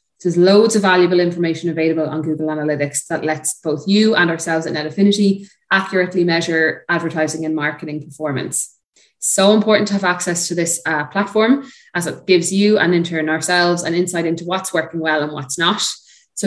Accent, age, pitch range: Irish, 20-39, 160-190 Hz